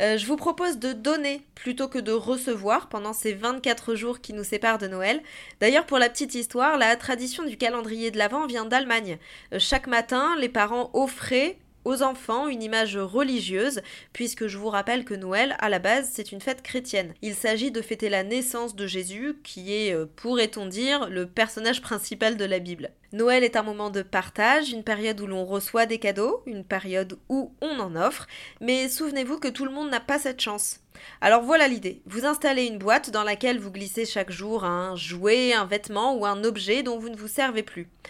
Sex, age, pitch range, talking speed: female, 20-39, 210-260 Hz, 205 wpm